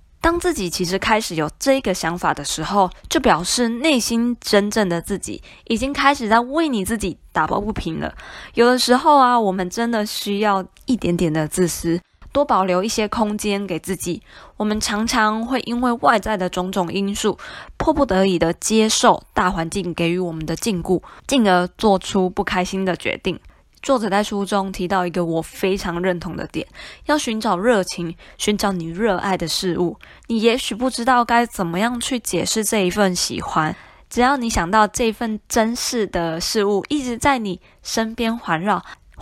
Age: 20-39